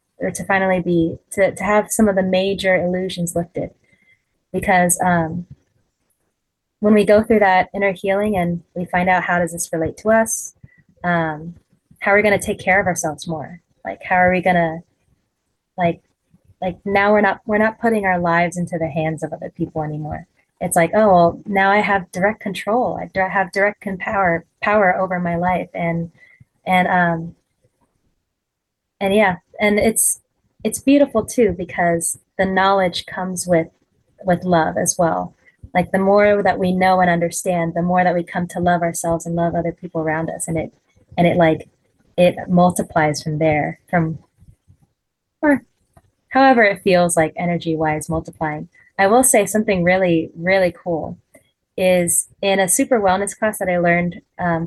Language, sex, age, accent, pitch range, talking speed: English, female, 20-39, American, 170-195 Hz, 175 wpm